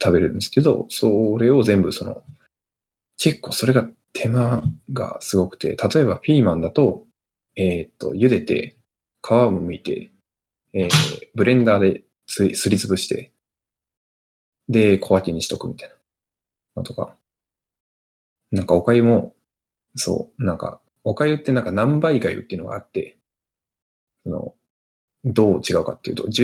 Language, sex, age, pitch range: Japanese, male, 20-39, 95-130 Hz